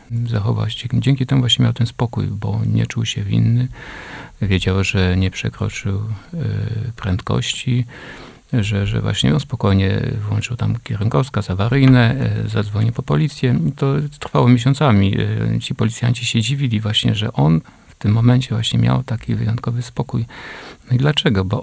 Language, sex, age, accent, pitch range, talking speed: Polish, male, 50-69, native, 110-125 Hz, 140 wpm